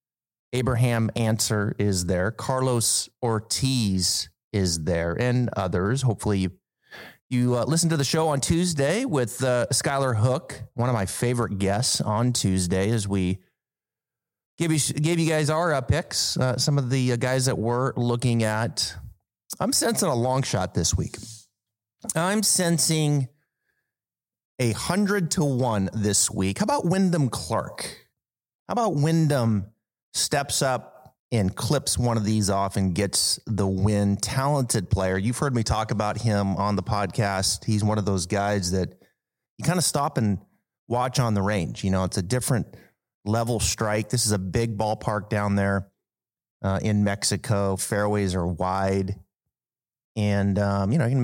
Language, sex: English, male